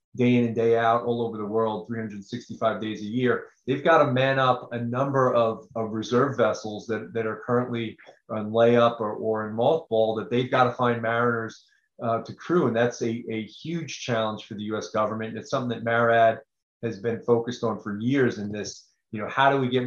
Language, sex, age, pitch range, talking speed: English, male, 30-49, 110-125 Hz, 215 wpm